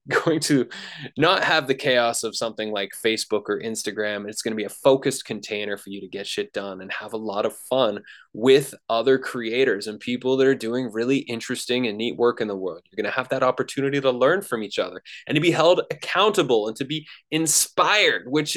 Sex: male